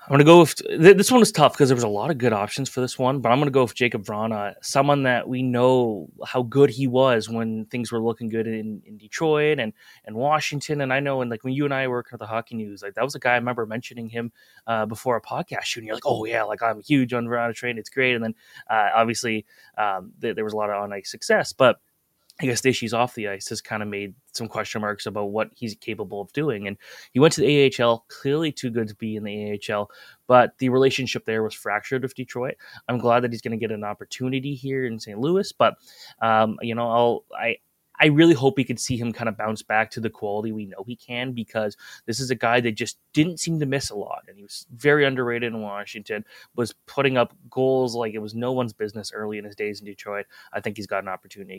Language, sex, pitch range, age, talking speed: English, male, 110-130 Hz, 20-39, 265 wpm